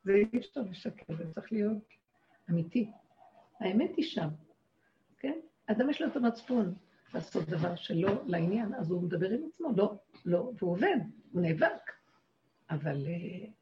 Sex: female